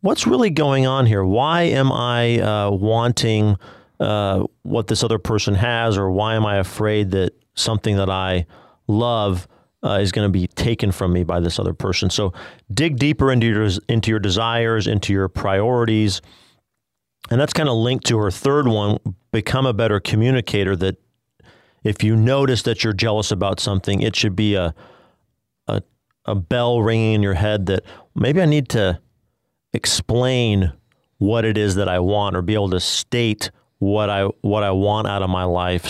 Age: 40-59